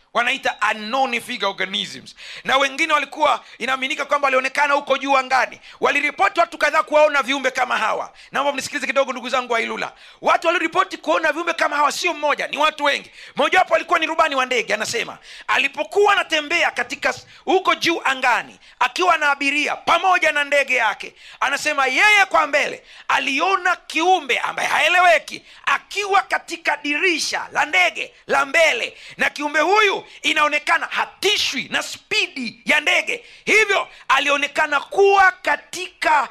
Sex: male